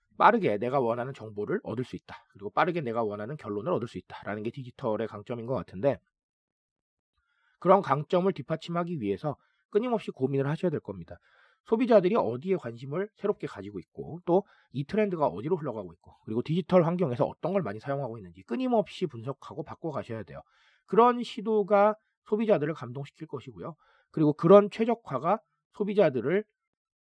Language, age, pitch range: Korean, 40-59, 120-190 Hz